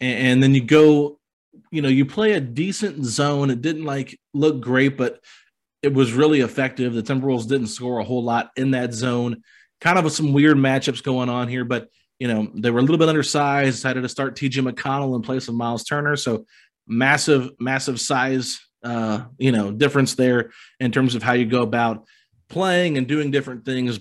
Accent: American